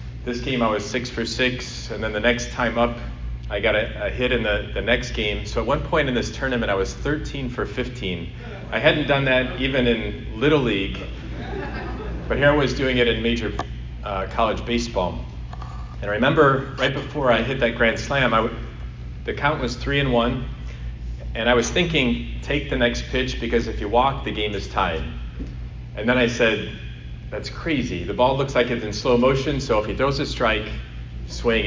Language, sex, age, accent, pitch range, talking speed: English, male, 40-59, American, 100-125 Hz, 205 wpm